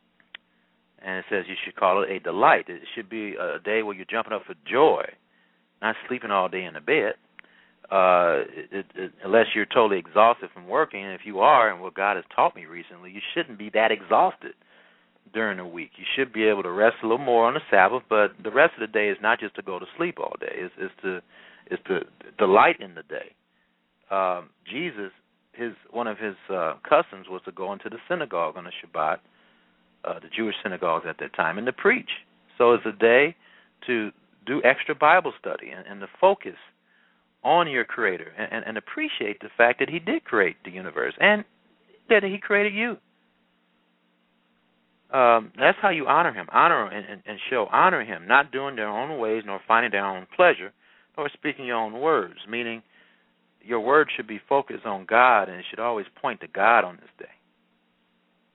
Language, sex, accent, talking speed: English, male, American, 200 wpm